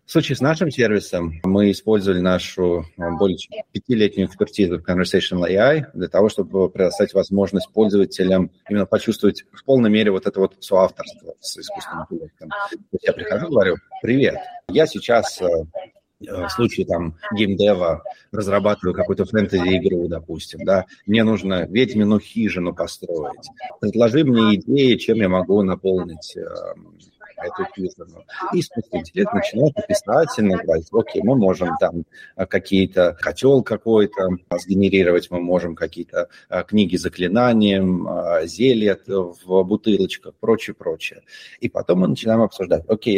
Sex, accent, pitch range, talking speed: male, native, 95-125 Hz, 125 wpm